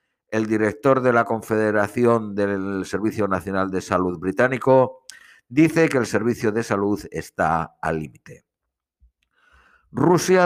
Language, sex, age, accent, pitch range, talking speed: Spanish, male, 60-79, Spanish, 110-150 Hz, 120 wpm